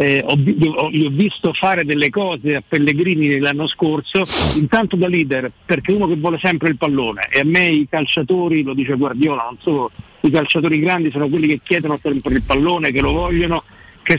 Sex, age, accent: male, 50-69, native